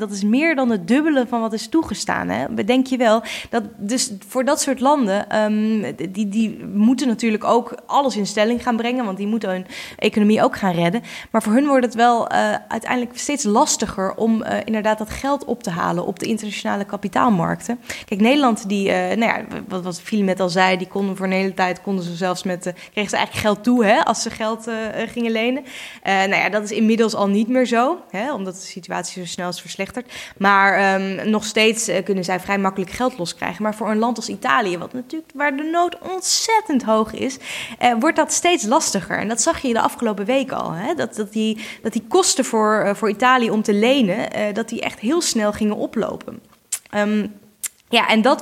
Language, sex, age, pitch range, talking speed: Dutch, female, 20-39, 200-250 Hz, 210 wpm